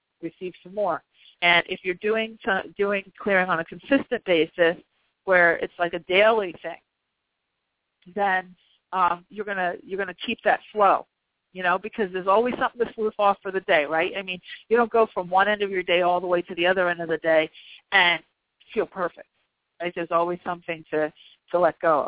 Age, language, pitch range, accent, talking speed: 50-69, English, 165-200 Hz, American, 200 wpm